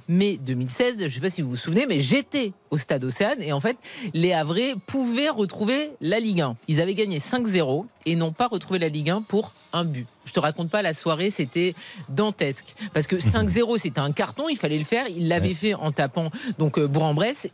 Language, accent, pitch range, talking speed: French, French, 155-220 Hz, 220 wpm